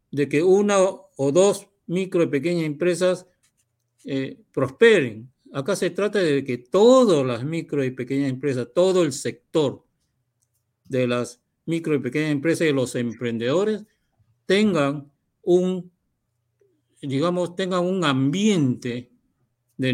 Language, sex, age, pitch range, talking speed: Spanish, male, 50-69, 125-175 Hz, 125 wpm